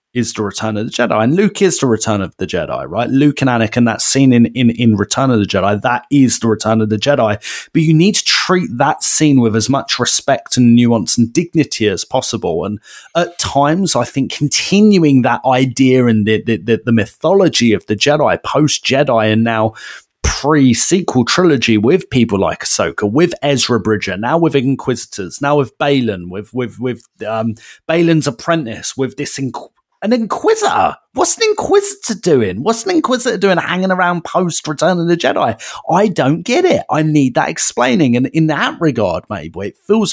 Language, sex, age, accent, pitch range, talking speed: English, male, 30-49, British, 115-160 Hz, 190 wpm